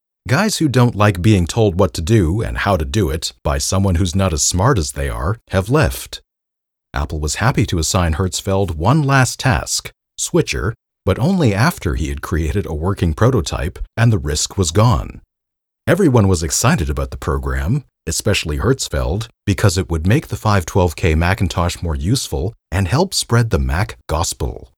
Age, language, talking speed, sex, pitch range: 40-59, English, 175 wpm, male, 80-115 Hz